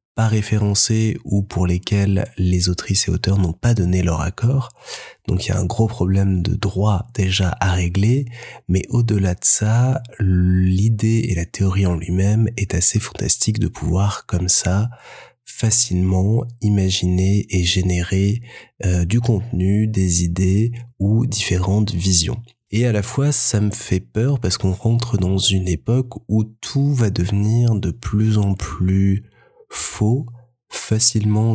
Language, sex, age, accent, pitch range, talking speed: French, male, 20-39, French, 95-110 Hz, 150 wpm